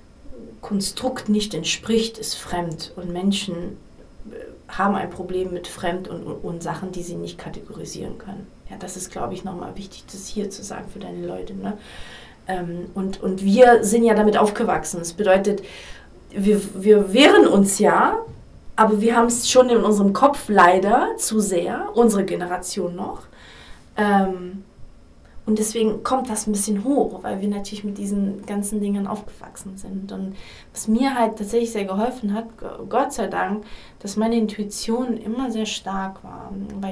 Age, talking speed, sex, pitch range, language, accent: 30-49, 160 wpm, female, 190-225 Hz, German, German